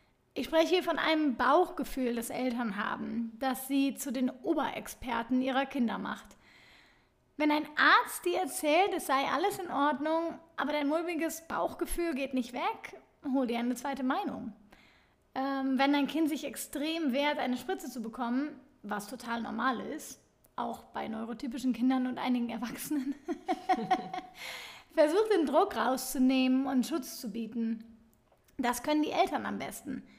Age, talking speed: 30-49, 150 wpm